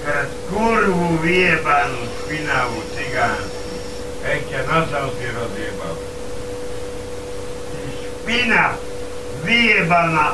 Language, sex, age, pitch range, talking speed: Slovak, male, 60-79, 100-165 Hz, 70 wpm